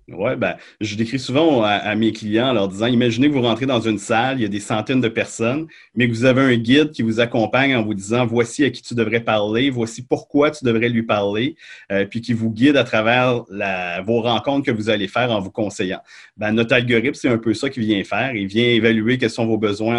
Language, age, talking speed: French, 30-49, 250 wpm